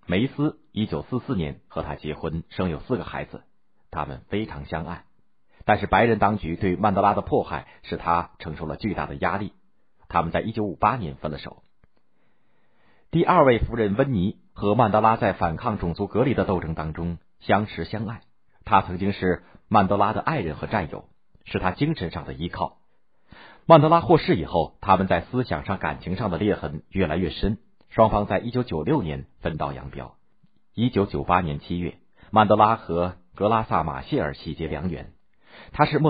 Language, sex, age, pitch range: Chinese, male, 50-69, 80-110 Hz